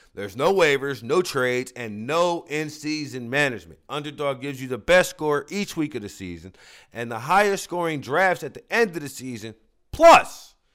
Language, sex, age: English, male, 40-59